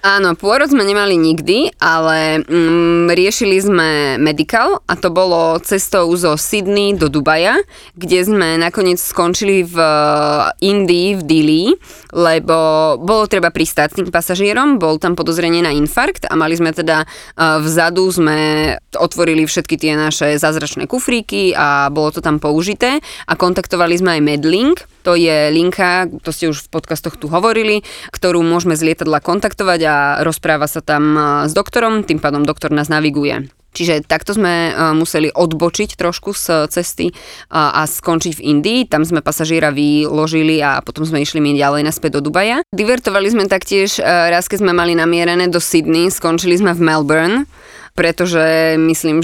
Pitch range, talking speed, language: 155-190 Hz, 155 wpm, Slovak